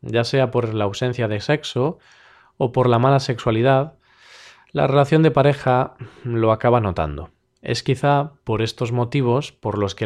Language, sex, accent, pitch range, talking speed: Spanish, male, Spanish, 110-140 Hz, 160 wpm